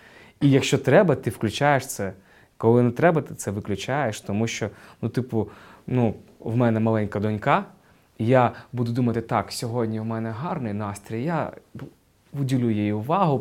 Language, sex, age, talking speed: Ukrainian, male, 20-39, 155 wpm